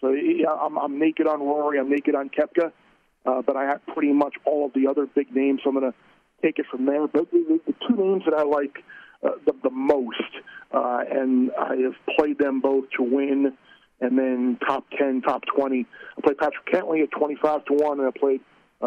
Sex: male